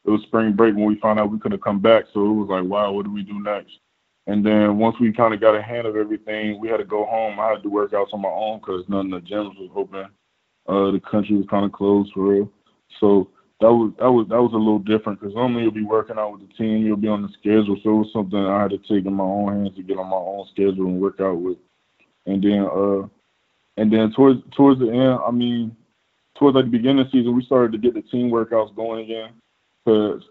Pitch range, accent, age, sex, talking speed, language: 100-115 Hz, American, 20-39, male, 265 wpm, English